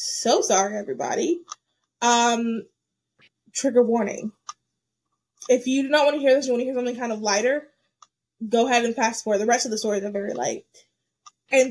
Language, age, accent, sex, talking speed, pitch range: English, 20-39, American, female, 185 wpm, 225-290 Hz